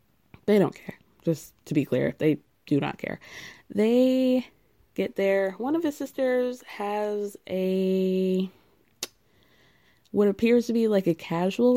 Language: English